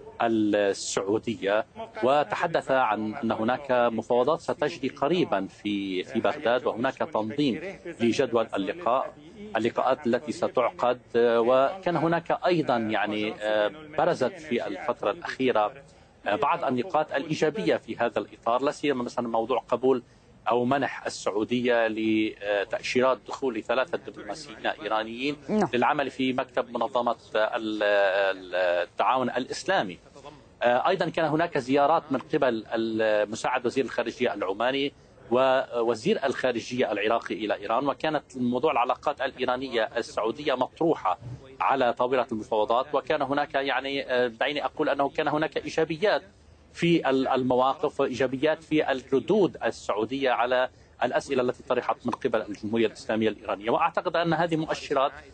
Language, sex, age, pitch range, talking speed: Arabic, male, 40-59, 115-150 Hz, 110 wpm